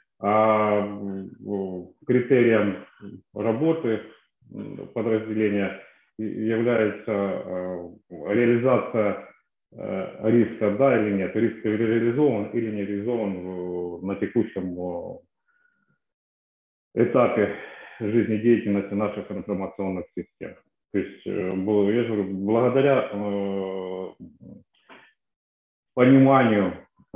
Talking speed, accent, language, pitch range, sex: 65 wpm, native, Ukrainian, 100-115 Hz, male